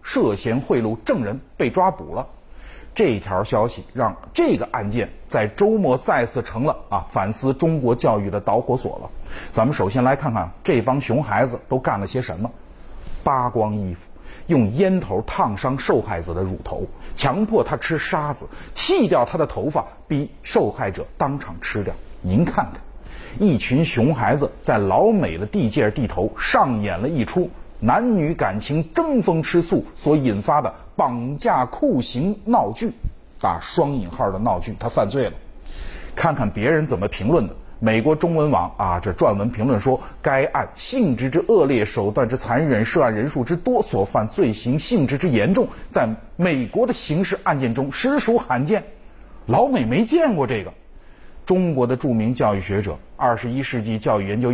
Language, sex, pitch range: Chinese, male, 105-160 Hz